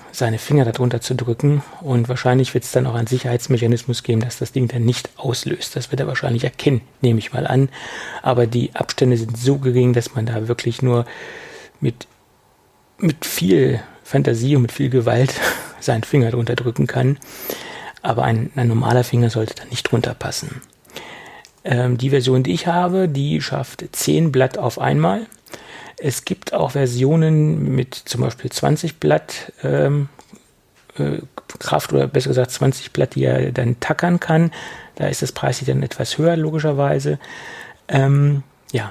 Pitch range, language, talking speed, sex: 120-150 Hz, German, 165 wpm, male